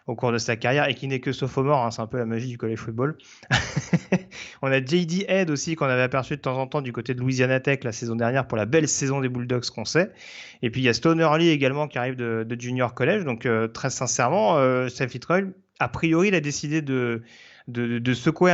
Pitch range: 120-155 Hz